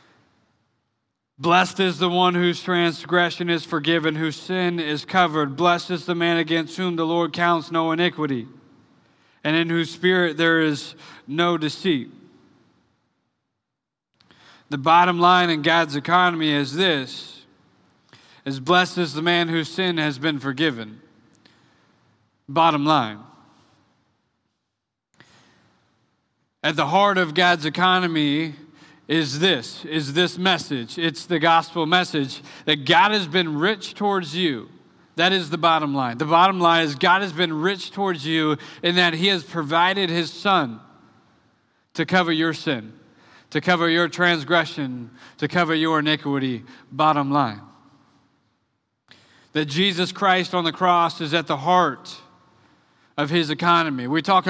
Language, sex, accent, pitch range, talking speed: English, male, American, 150-180 Hz, 135 wpm